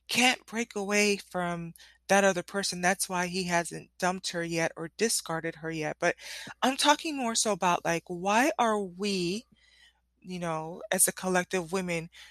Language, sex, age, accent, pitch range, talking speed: English, female, 20-39, American, 180-240 Hz, 165 wpm